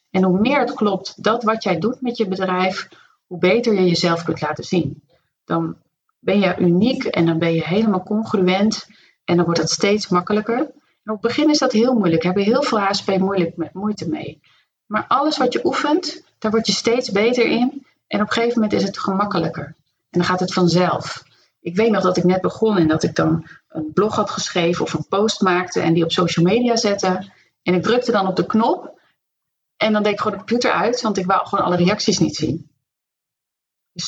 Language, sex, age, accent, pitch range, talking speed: Dutch, female, 40-59, Dutch, 175-220 Hz, 220 wpm